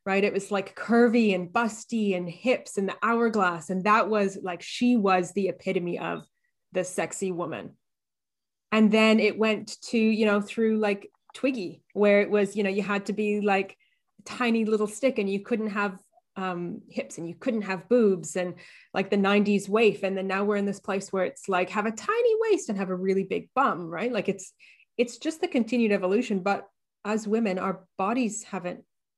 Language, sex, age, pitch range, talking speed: English, female, 20-39, 190-220 Hz, 200 wpm